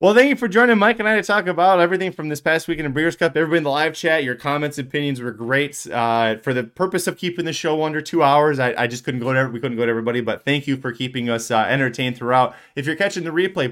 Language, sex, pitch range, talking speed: English, male, 115-170 Hz, 290 wpm